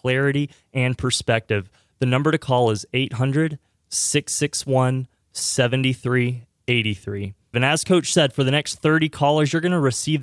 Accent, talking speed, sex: American, 130 wpm, male